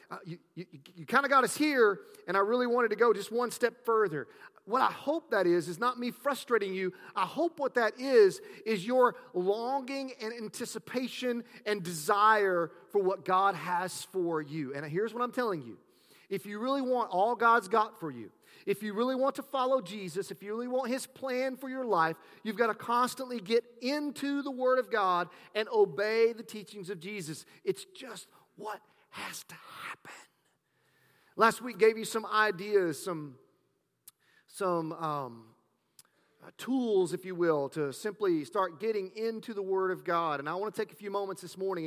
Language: English